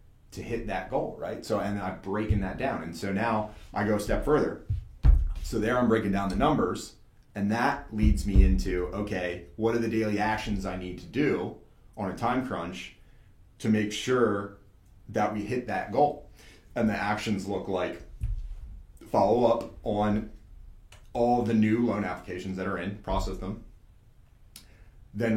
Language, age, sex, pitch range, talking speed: English, 30-49, male, 95-110 Hz, 170 wpm